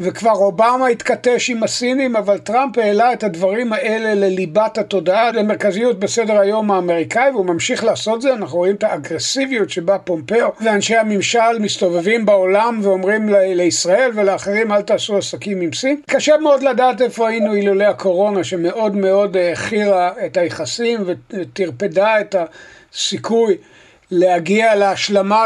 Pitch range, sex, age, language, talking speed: 195-235 Hz, male, 60-79, Hebrew, 130 wpm